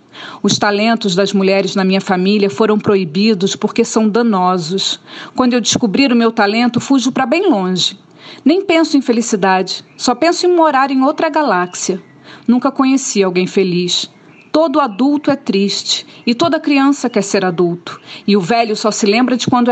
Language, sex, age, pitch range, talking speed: Portuguese, female, 40-59, 200-255 Hz, 165 wpm